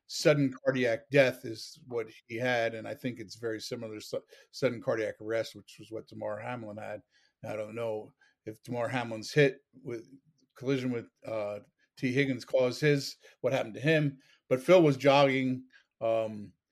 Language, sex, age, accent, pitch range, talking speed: English, male, 50-69, American, 115-135 Hz, 170 wpm